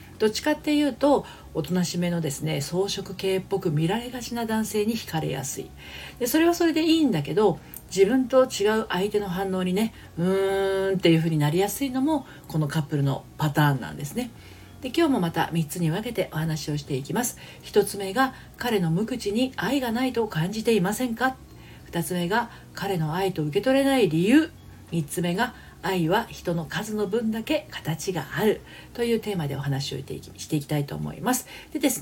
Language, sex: Japanese, female